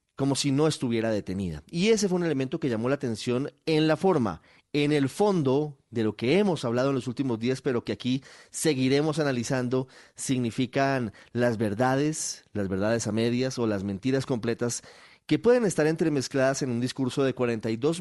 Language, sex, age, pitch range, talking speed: Spanish, male, 30-49, 115-145 Hz, 180 wpm